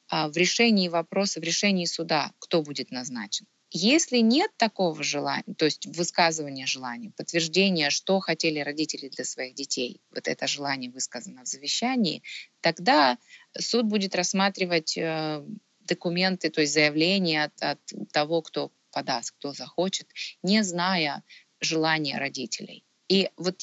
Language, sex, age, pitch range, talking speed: Russian, female, 20-39, 155-205 Hz, 130 wpm